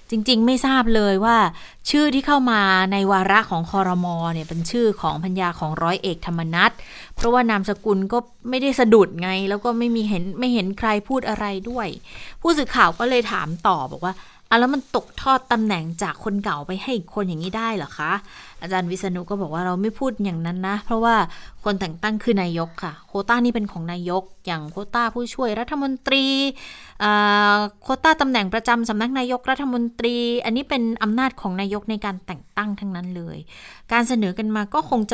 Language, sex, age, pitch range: Thai, female, 20-39, 180-225 Hz